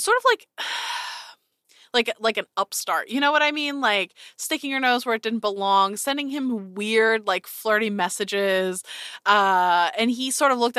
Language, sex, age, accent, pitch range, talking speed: English, female, 20-39, American, 195-255 Hz, 180 wpm